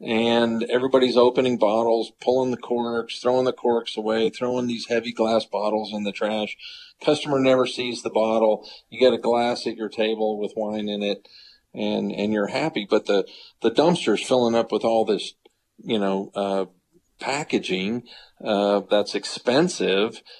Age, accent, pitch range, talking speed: 50-69, American, 105-120 Hz, 160 wpm